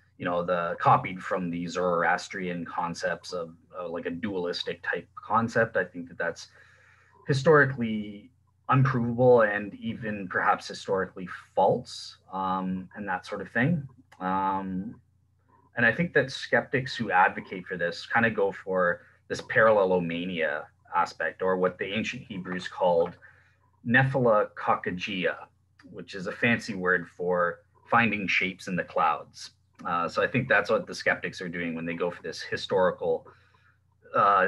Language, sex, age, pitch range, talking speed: English, male, 30-49, 90-130 Hz, 145 wpm